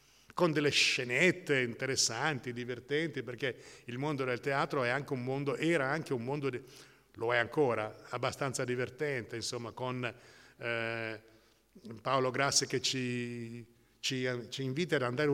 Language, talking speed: Italian, 140 wpm